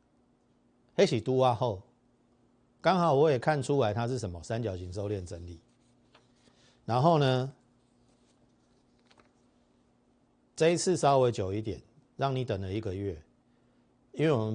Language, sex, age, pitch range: Chinese, male, 50-69, 100-135 Hz